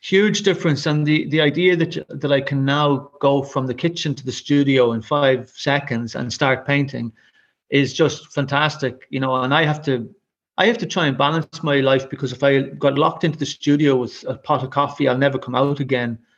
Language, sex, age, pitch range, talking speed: English, male, 30-49, 130-155 Hz, 215 wpm